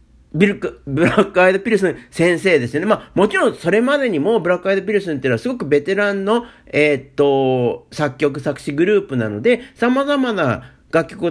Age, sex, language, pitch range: 50-69, male, Japanese, 155-255 Hz